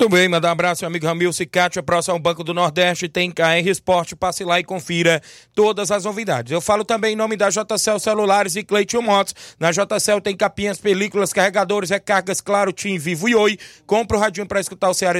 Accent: Brazilian